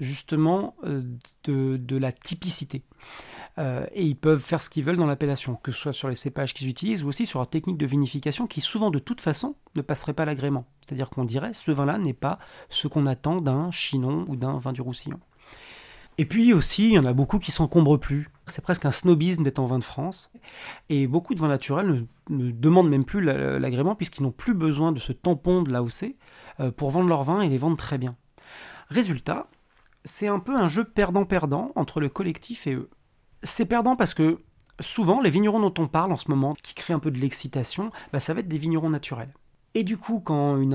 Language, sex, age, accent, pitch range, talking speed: French, male, 40-59, French, 135-175 Hz, 225 wpm